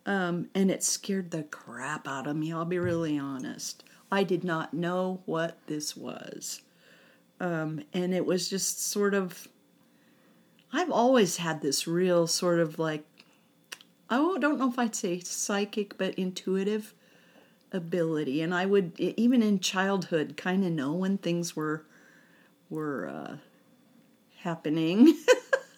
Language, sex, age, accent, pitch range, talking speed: English, female, 40-59, American, 175-240 Hz, 140 wpm